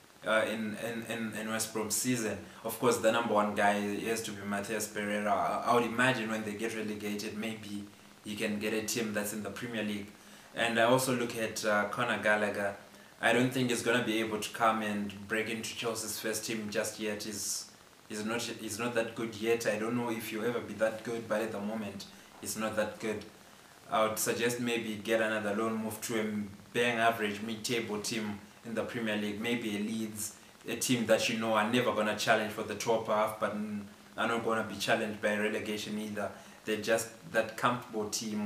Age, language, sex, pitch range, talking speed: 20-39, English, male, 105-115 Hz, 210 wpm